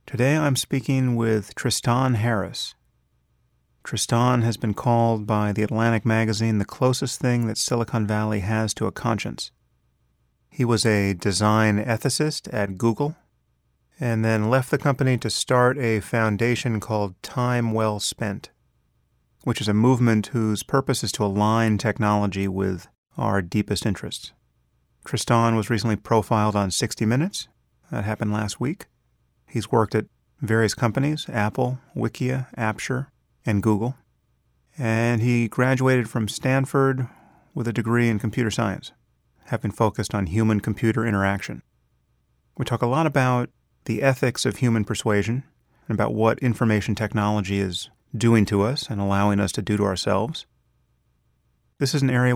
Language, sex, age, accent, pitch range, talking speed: English, male, 40-59, American, 105-125 Hz, 145 wpm